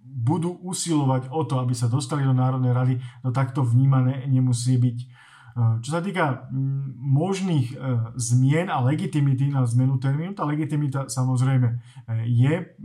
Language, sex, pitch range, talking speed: Slovak, male, 125-145 Hz, 135 wpm